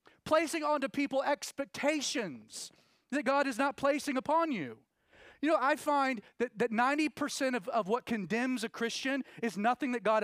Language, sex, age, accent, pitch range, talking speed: English, male, 30-49, American, 205-285 Hz, 165 wpm